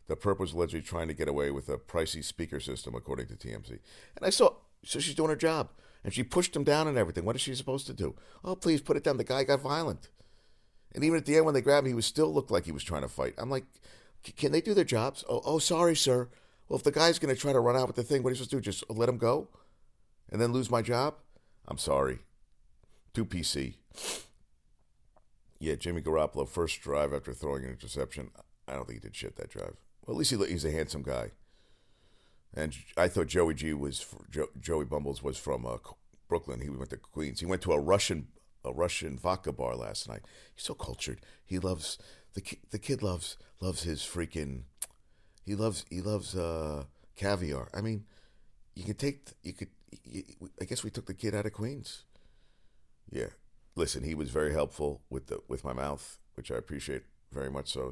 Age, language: 50-69, English